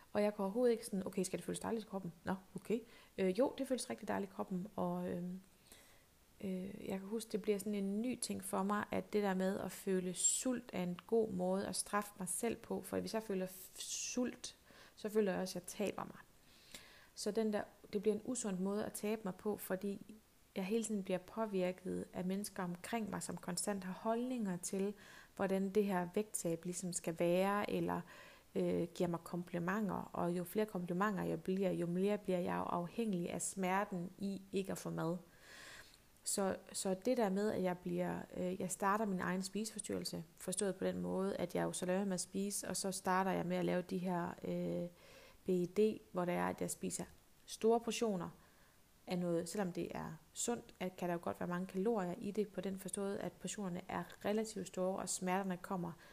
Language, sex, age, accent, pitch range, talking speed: Danish, female, 30-49, native, 180-210 Hz, 210 wpm